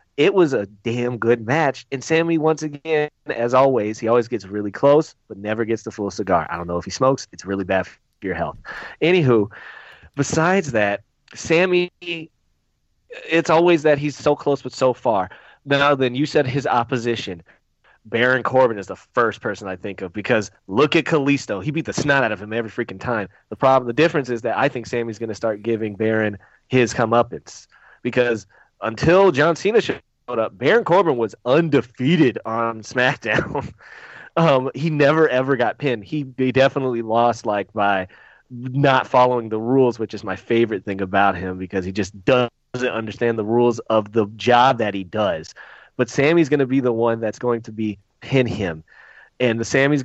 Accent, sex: American, male